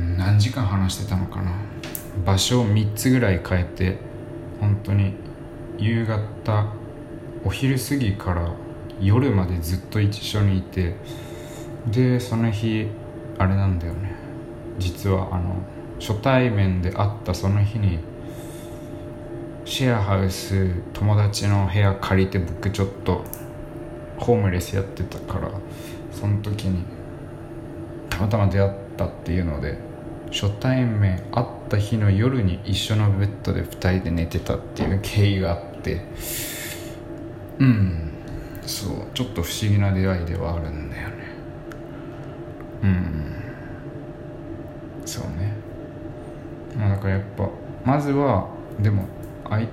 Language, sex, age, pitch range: Japanese, male, 20-39, 95-115 Hz